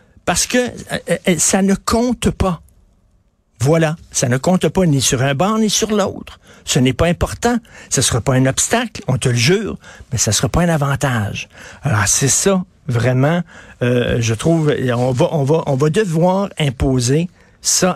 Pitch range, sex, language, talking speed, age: 125-170 Hz, male, French, 185 wpm, 60-79